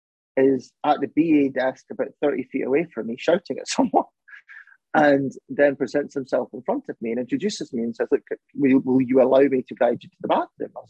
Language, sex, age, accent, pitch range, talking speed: English, male, 30-49, British, 115-140 Hz, 220 wpm